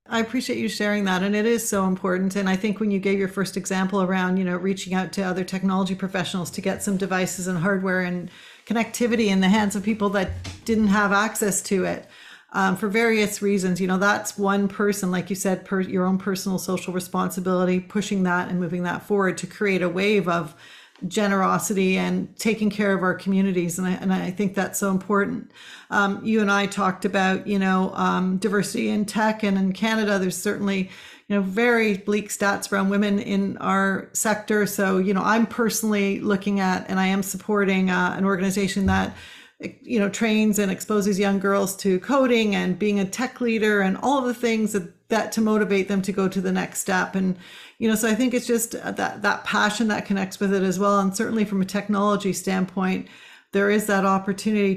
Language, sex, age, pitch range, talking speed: English, female, 40-59, 190-210 Hz, 205 wpm